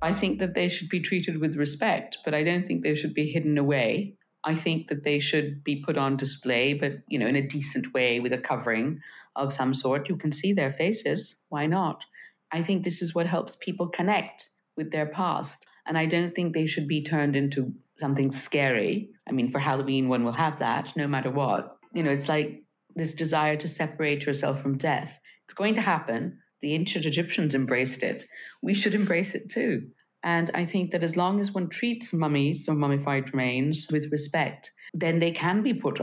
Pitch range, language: 140-170 Hz, English